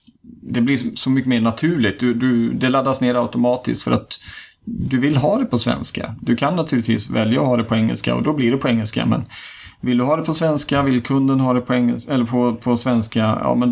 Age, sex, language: 30-49, male, Swedish